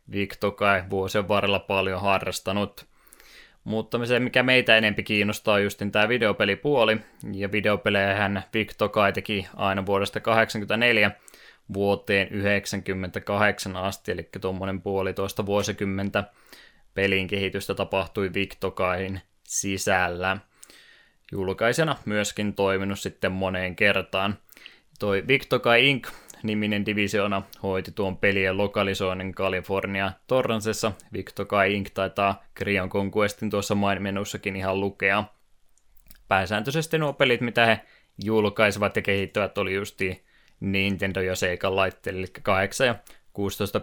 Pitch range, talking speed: 95-105 Hz, 105 wpm